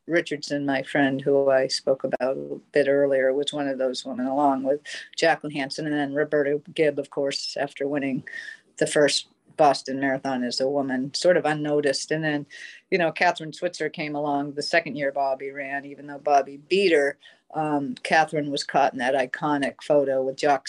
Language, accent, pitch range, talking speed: English, American, 140-160 Hz, 190 wpm